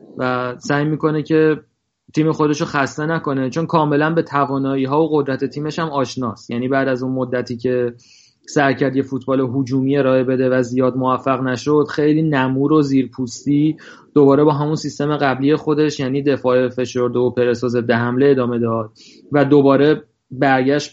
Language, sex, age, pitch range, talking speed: Persian, male, 30-49, 130-150 Hz, 165 wpm